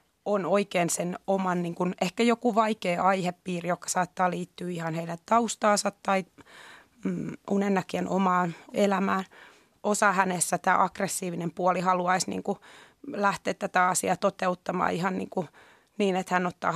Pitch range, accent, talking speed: 180-200 Hz, native, 140 wpm